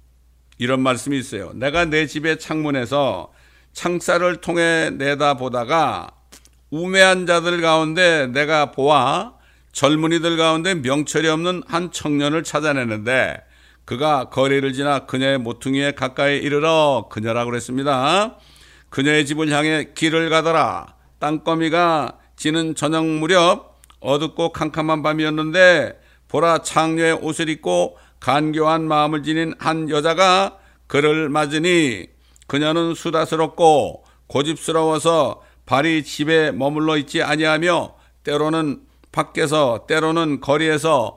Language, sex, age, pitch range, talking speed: English, male, 60-79, 135-160 Hz, 95 wpm